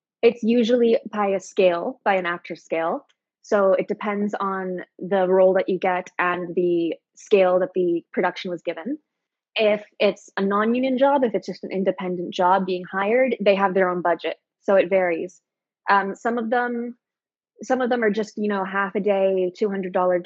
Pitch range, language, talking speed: 185-230 Hz, English, 185 wpm